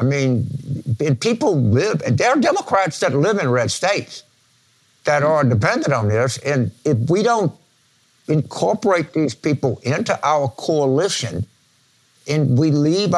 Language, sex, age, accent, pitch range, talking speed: English, male, 60-79, American, 125-155 Hz, 140 wpm